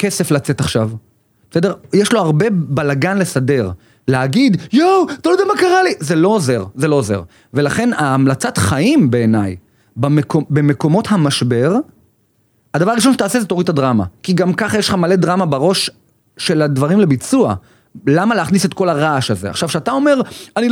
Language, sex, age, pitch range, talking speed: Hebrew, male, 30-49, 130-185 Hz, 170 wpm